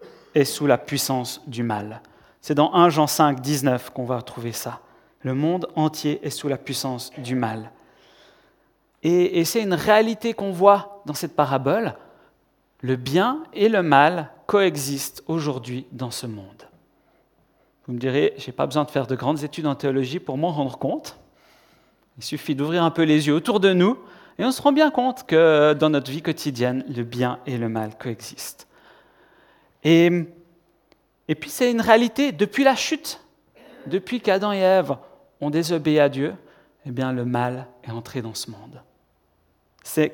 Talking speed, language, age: 175 wpm, French, 40-59